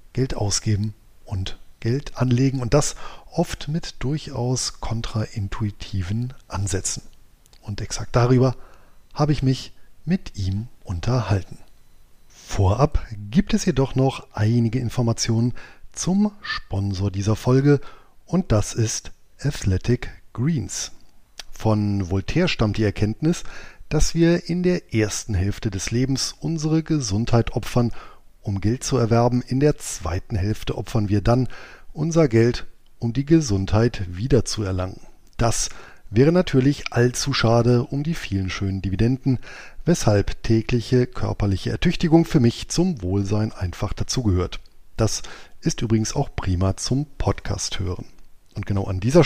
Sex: male